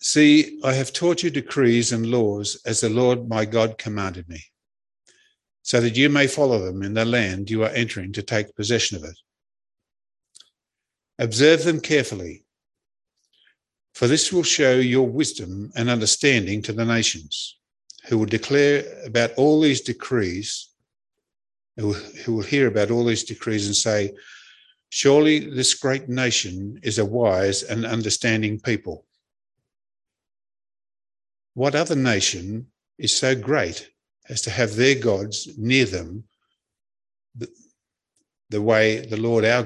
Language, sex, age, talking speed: English, male, 50-69, 140 wpm